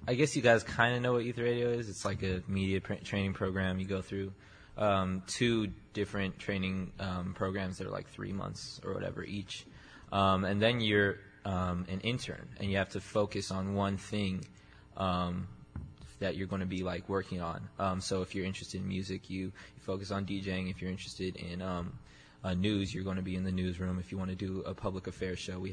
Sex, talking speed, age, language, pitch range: male, 215 wpm, 20-39, English, 95-105 Hz